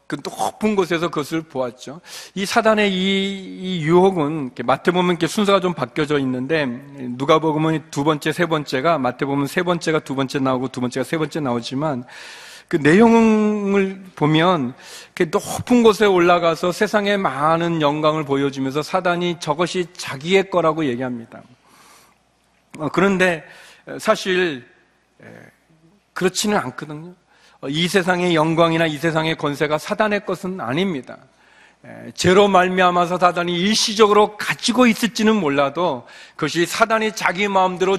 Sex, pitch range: male, 155-205 Hz